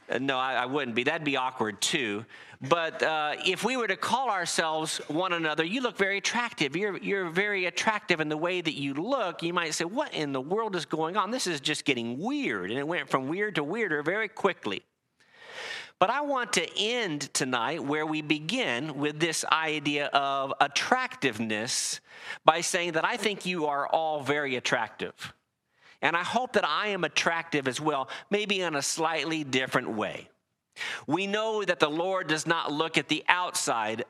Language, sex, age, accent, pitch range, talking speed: English, male, 50-69, American, 140-180 Hz, 190 wpm